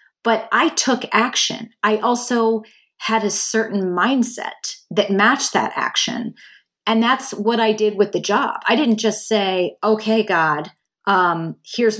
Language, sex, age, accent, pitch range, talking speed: English, female, 30-49, American, 190-230 Hz, 150 wpm